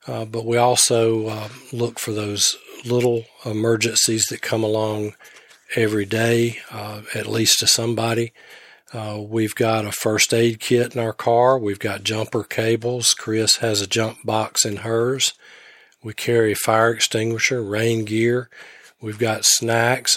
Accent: American